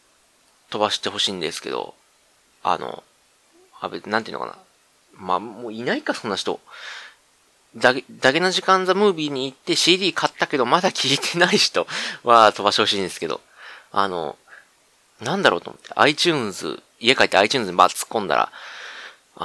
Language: Japanese